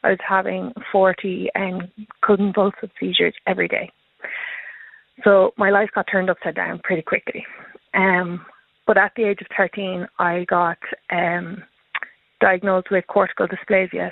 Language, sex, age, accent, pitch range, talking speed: English, female, 20-39, Irish, 180-205 Hz, 140 wpm